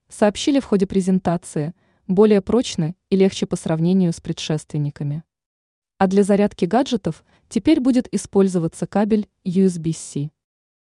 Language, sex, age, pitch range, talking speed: Russian, female, 20-39, 170-215 Hz, 115 wpm